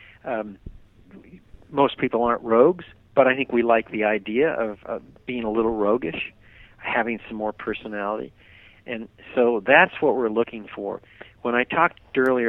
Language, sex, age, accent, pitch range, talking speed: English, male, 50-69, American, 105-125 Hz, 160 wpm